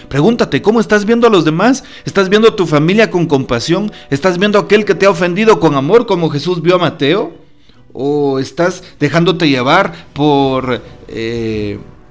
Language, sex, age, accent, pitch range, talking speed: Spanish, male, 40-59, Mexican, 120-175 Hz, 175 wpm